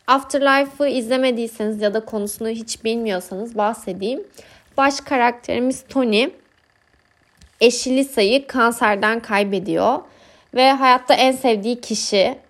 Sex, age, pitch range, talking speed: female, 20-39, 220-280 Hz, 95 wpm